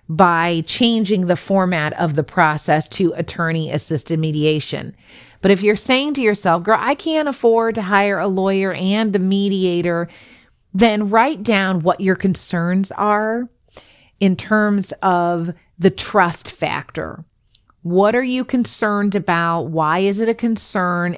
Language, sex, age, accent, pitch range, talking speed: English, female, 30-49, American, 165-215 Hz, 140 wpm